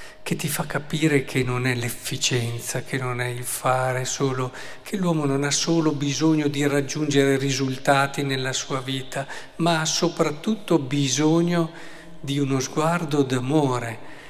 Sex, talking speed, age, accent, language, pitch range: male, 145 wpm, 50-69, native, Italian, 130-155 Hz